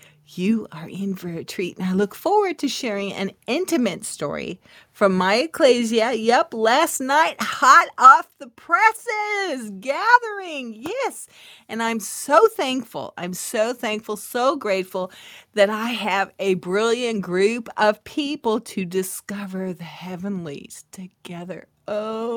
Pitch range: 195-295 Hz